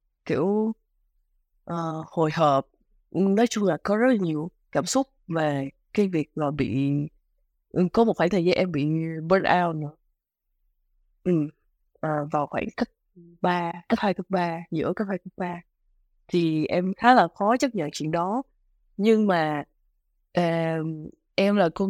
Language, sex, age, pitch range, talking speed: Vietnamese, female, 20-39, 155-205 Hz, 150 wpm